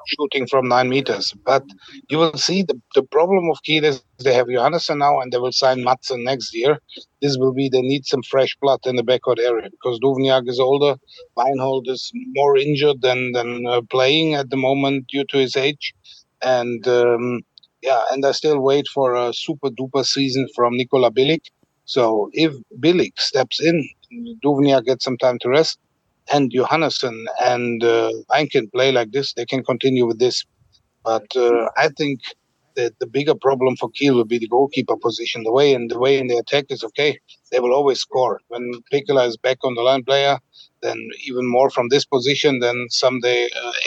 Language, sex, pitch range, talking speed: English, male, 125-140 Hz, 195 wpm